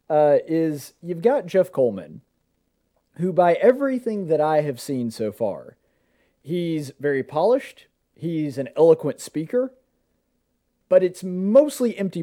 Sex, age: male, 30-49